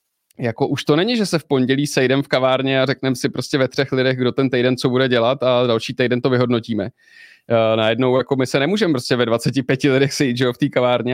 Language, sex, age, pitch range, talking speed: Czech, male, 30-49, 120-130 Hz, 230 wpm